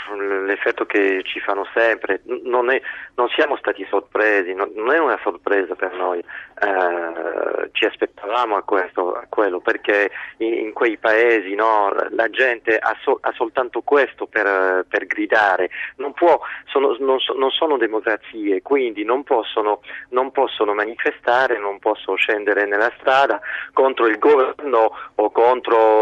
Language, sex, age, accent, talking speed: Italian, male, 40-59, native, 150 wpm